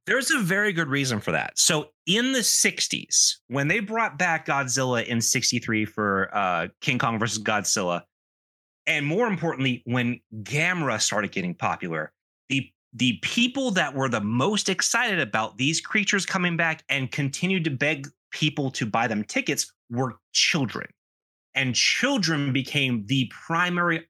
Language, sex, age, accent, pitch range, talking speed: English, male, 30-49, American, 115-160 Hz, 150 wpm